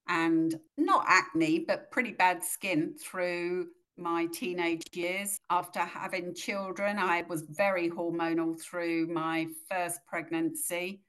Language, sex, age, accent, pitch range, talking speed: English, female, 50-69, British, 160-190 Hz, 120 wpm